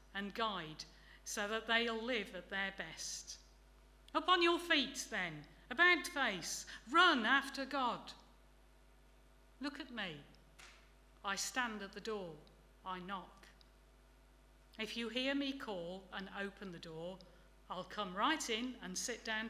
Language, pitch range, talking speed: English, 135-225 Hz, 140 wpm